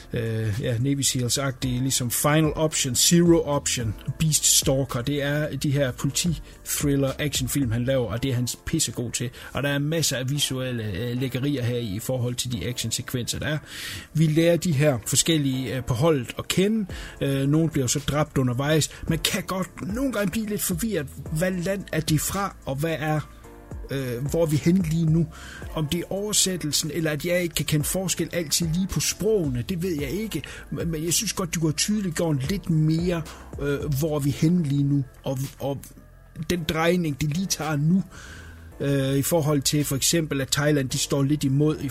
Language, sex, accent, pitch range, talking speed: English, male, Danish, 135-165 Hz, 185 wpm